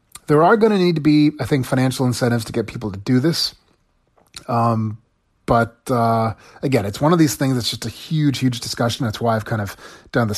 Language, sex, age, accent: English, male, 30-49, American